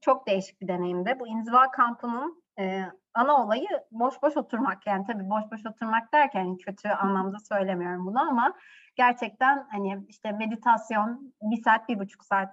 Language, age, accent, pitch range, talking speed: Turkish, 30-49, native, 200-240 Hz, 155 wpm